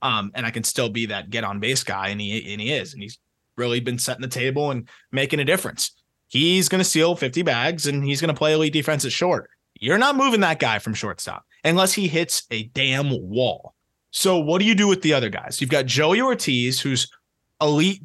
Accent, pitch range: American, 115-155 Hz